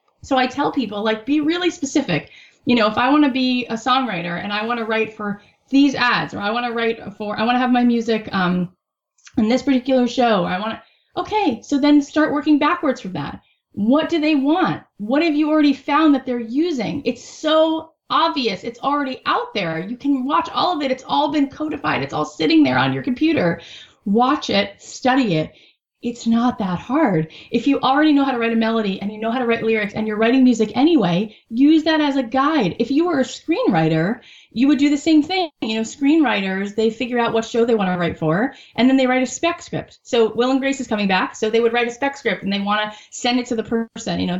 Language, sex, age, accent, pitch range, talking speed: English, female, 20-39, American, 210-275 Hz, 245 wpm